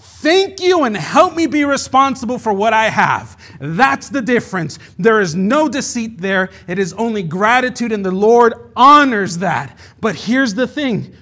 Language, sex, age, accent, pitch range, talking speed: English, male, 40-59, American, 130-205 Hz, 170 wpm